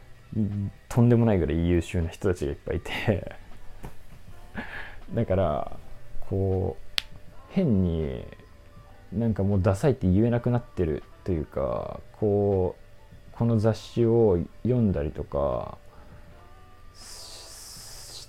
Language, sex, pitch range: Japanese, male, 90-115 Hz